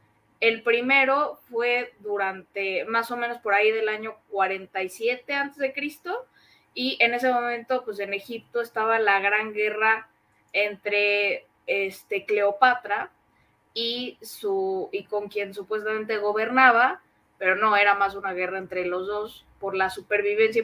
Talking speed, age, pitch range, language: 140 wpm, 20-39, 195-240 Hz, Spanish